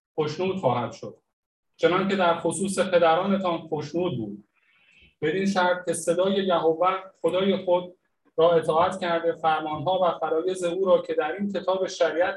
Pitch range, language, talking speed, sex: 160-185 Hz, Persian, 145 wpm, male